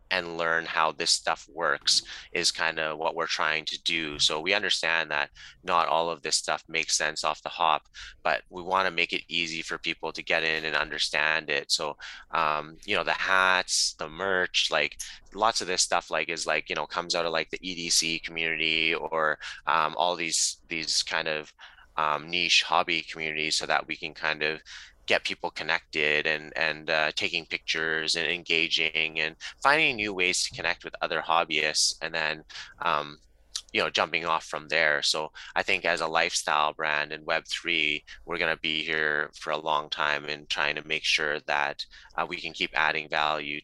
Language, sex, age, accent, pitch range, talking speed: English, male, 20-39, American, 75-85 Hz, 195 wpm